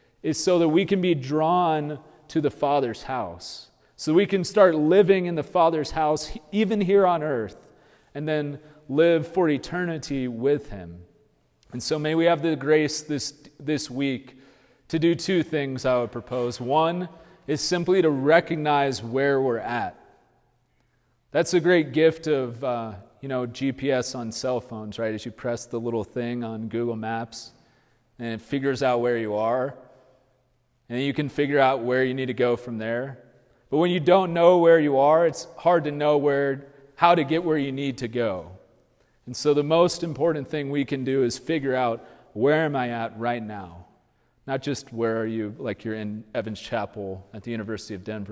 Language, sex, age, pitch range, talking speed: English, male, 30-49, 120-160 Hz, 190 wpm